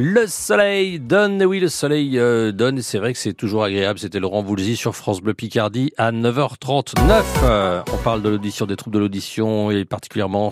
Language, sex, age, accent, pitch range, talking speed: French, male, 40-59, French, 105-150 Hz, 185 wpm